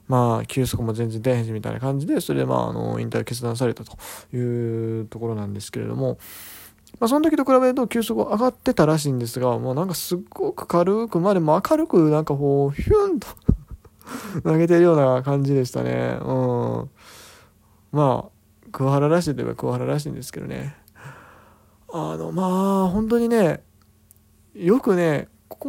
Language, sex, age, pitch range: Japanese, male, 20-39, 115-175 Hz